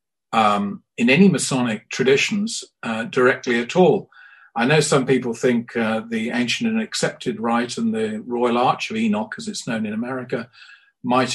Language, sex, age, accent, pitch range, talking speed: English, male, 50-69, British, 120-185 Hz, 170 wpm